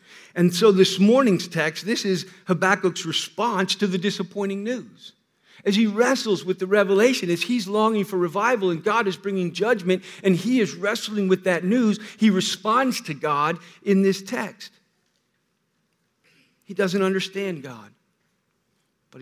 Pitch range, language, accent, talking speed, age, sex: 155-195 Hz, English, American, 150 wpm, 50-69, male